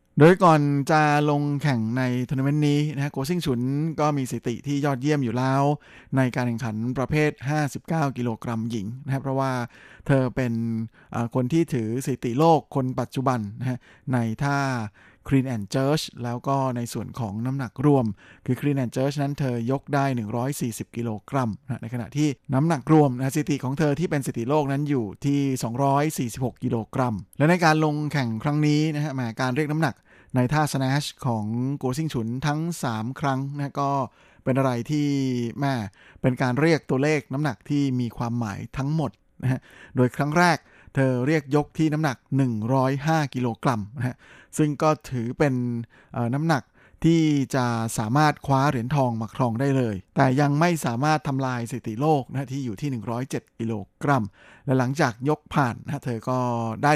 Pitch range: 120-145 Hz